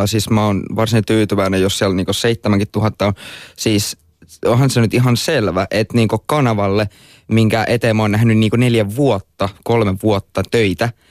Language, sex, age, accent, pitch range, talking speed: Finnish, male, 20-39, native, 95-110 Hz, 160 wpm